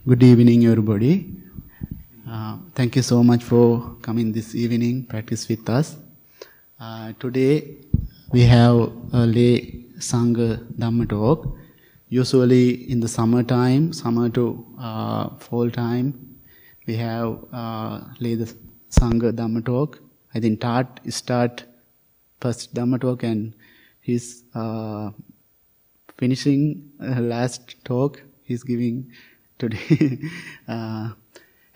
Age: 20-39